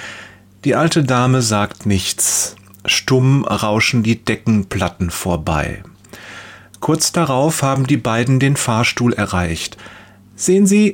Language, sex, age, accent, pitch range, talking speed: German, male, 40-59, German, 105-155 Hz, 110 wpm